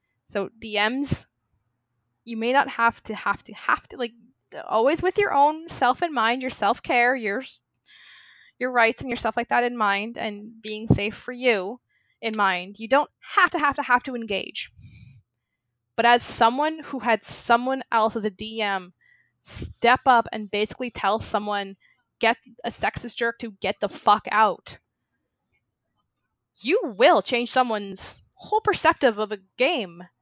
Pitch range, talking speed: 210-265 Hz, 160 wpm